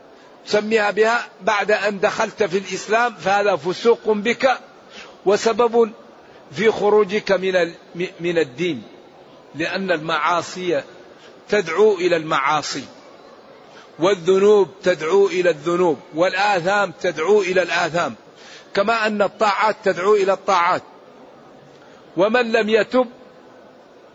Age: 50-69